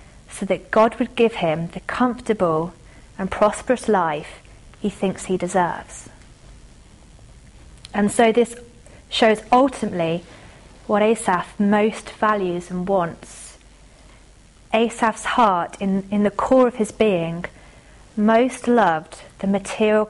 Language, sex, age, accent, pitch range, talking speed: English, female, 30-49, British, 180-220 Hz, 115 wpm